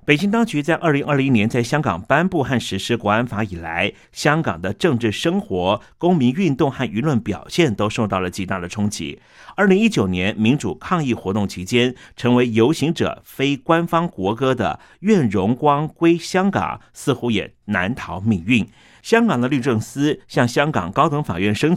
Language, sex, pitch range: Chinese, male, 110-150 Hz